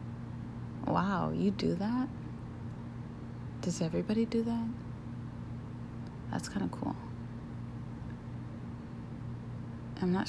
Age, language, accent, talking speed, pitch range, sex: 30-49, English, American, 80 wpm, 120-175 Hz, female